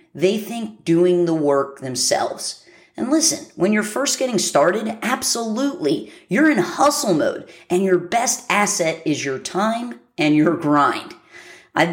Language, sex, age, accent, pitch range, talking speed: English, female, 30-49, American, 165-230 Hz, 145 wpm